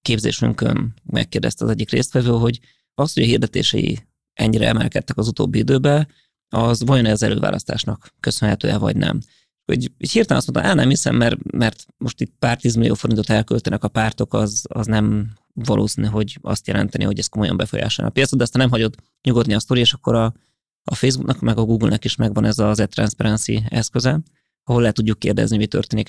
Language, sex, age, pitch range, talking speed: Hungarian, male, 20-39, 110-125 Hz, 185 wpm